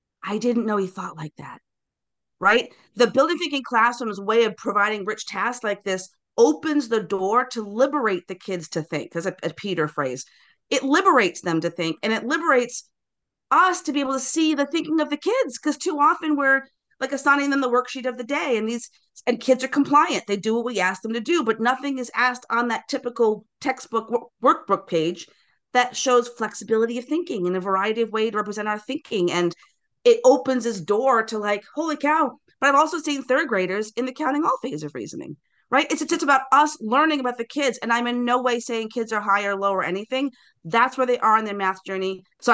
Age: 40-59